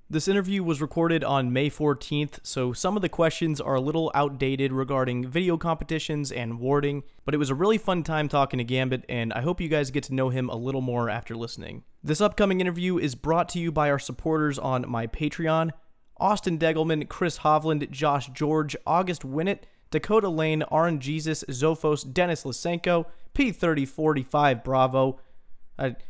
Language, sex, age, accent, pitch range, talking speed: English, male, 30-49, American, 130-160 Hz, 175 wpm